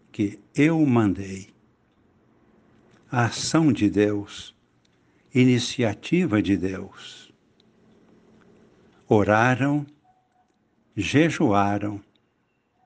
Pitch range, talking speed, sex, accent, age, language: 100-135 Hz, 55 wpm, male, Brazilian, 60-79, Portuguese